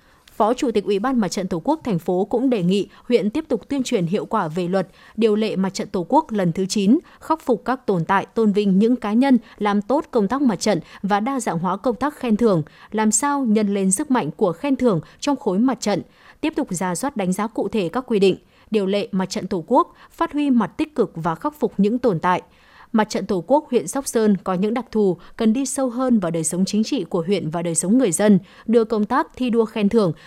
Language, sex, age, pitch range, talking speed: Vietnamese, female, 20-39, 190-250 Hz, 260 wpm